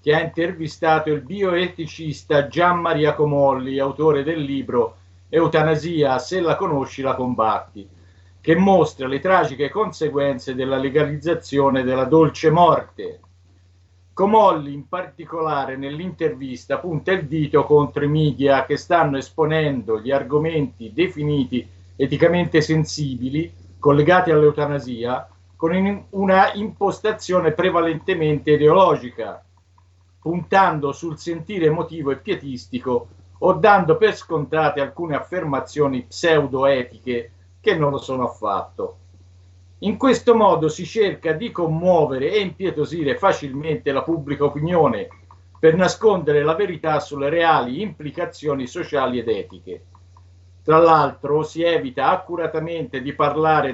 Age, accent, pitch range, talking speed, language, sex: 50-69, native, 130-165 Hz, 110 wpm, Italian, male